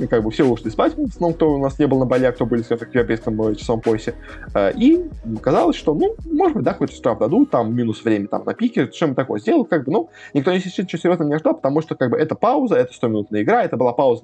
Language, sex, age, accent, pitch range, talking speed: Russian, male, 20-39, native, 110-160 Hz, 280 wpm